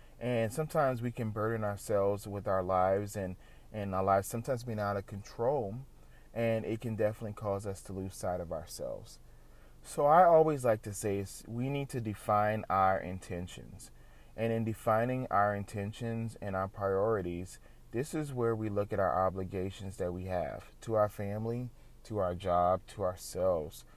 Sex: male